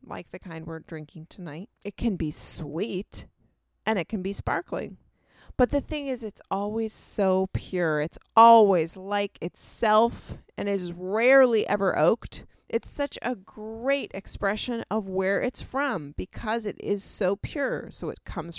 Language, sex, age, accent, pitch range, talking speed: English, female, 30-49, American, 170-225 Hz, 160 wpm